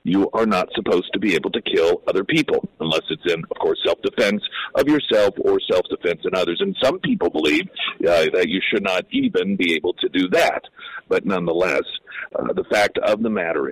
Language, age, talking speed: English, 50-69, 200 wpm